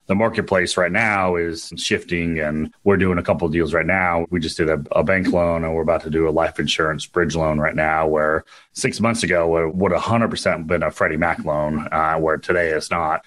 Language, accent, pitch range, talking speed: English, American, 80-95 Hz, 230 wpm